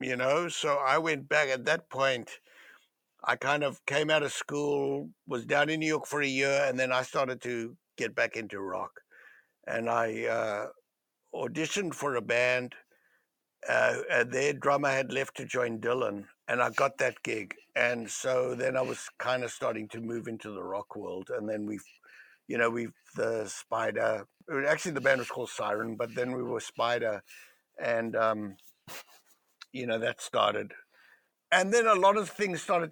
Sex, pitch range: male, 125-150 Hz